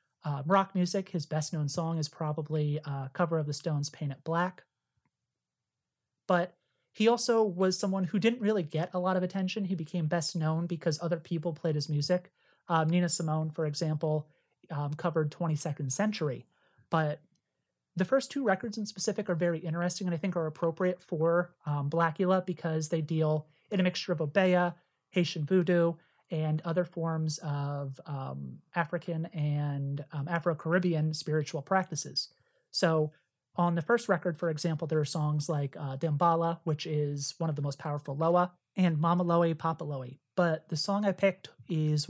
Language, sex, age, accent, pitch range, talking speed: English, male, 30-49, American, 150-180 Hz, 170 wpm